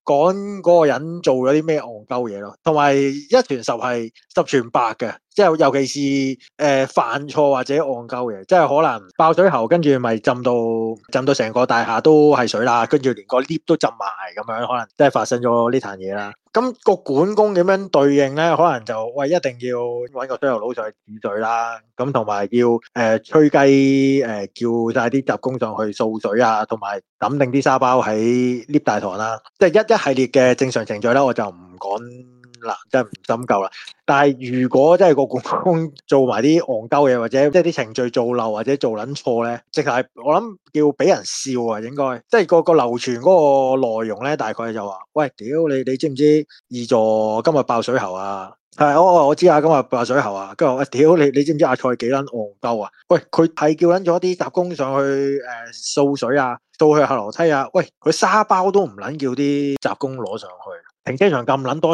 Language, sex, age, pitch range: Chinese, male, 20-39, 120-150 Hz